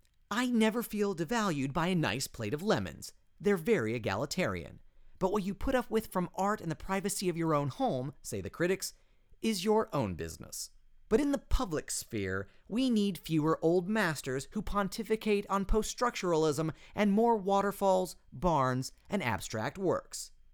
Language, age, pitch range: English, 30-49, 155-215 Hz